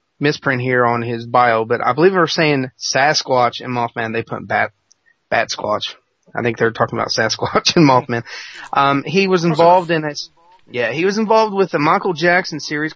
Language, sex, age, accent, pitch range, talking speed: English, male, 30-49, American, 130-165 Hz, 195 wpm